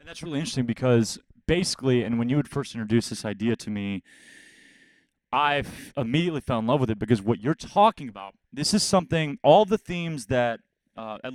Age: 30-49